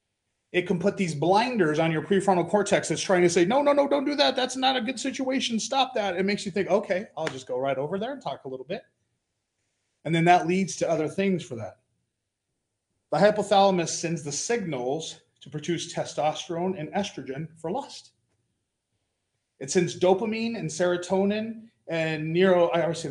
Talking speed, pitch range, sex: 190 wpm, 135-195 Hz, male